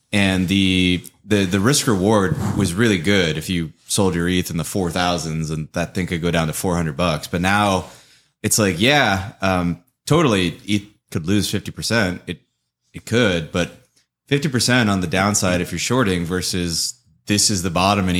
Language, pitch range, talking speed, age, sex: English, 90-100 Hz, 190 wpm, 20-39, male